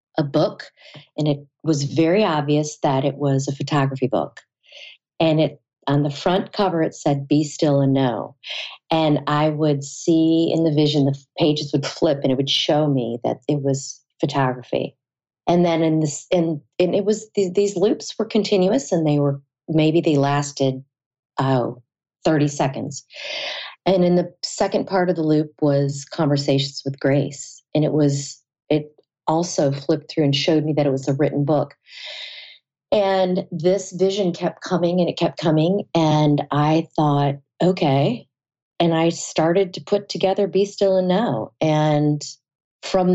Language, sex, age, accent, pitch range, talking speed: English, female, 40-59, American, 140-175 Hz, 165 wpm